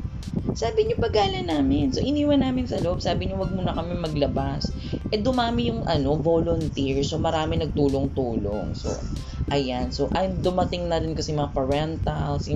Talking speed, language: 160 wpm, Filipino